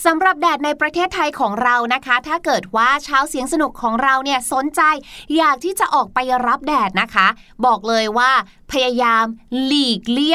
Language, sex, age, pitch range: Thai, female, 20-39, 220-310 Hz